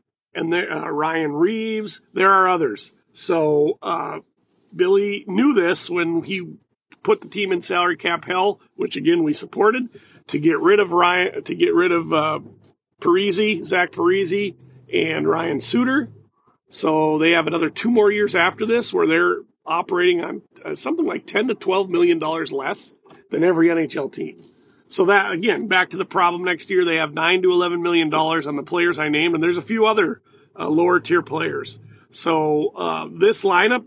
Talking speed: 180 wpm